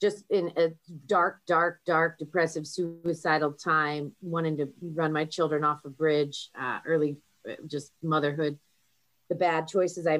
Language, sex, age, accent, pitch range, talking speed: English, female, 30-49, American, 150-175 Hz, 145 wpm